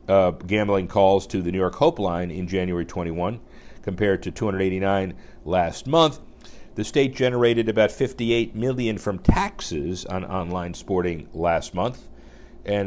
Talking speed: 145 wpm